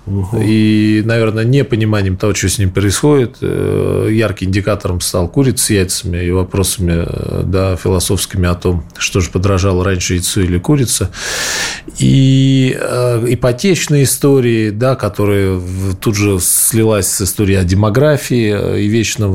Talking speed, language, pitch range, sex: 125 wpm, Russian, 95-125 Hz, male